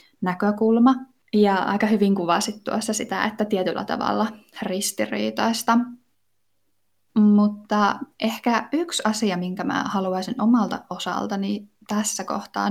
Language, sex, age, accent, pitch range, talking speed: Finnish, female, 10-29, native, 185-220 Hz, 105 wpm